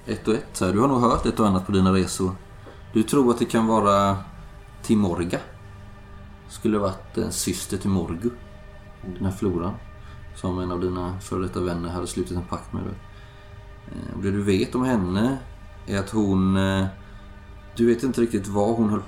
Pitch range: 90-100 Hz